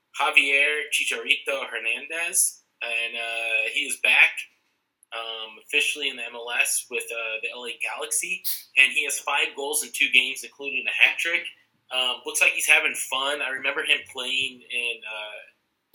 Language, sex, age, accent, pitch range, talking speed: English, male, 20-39, American, 115-180 Hz, 155 wpm